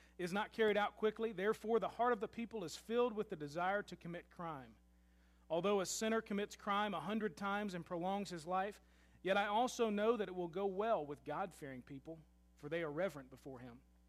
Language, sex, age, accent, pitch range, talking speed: English, male, 40-59, American, 150-210 Hz, 210 wpm